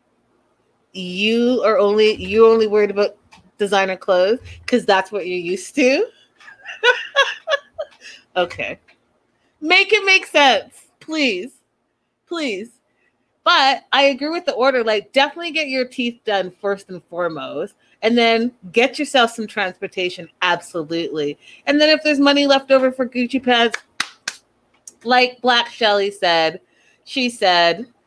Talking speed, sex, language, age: 130 wpm, female, English, 30-49